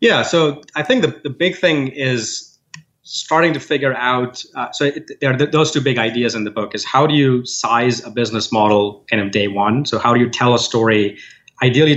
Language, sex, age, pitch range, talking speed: English, male, 30-49, 110-130 Hz, 235 wpm